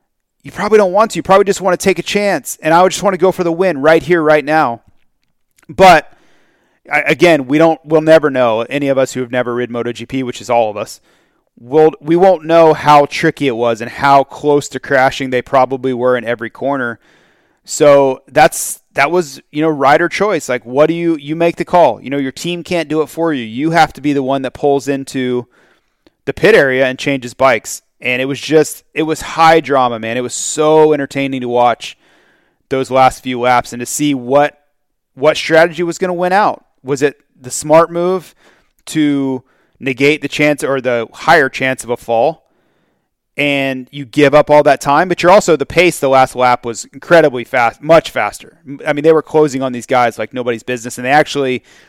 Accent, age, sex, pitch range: American, 30-49, male, 130-160 Hz